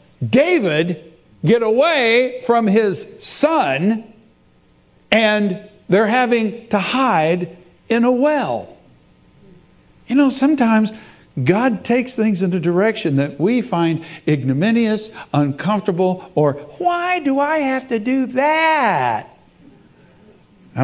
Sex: male